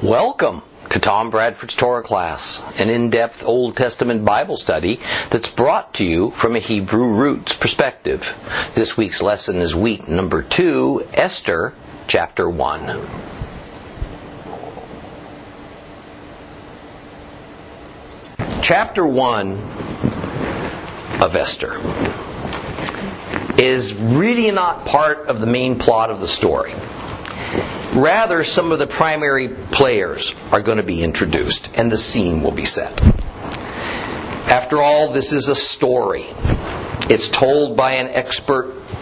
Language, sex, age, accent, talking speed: English, male, 50-69, American, 115 wpm